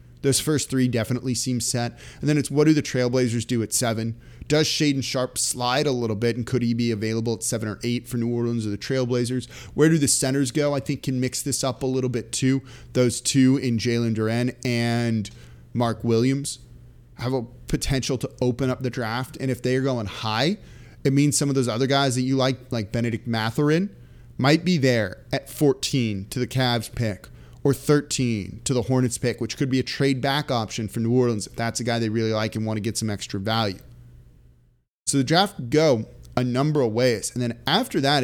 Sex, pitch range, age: male, 115-135 Hz, 30-49